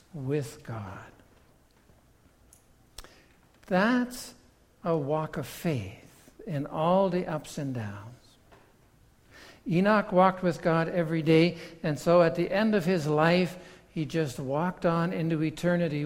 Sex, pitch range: male, 135-180 Hz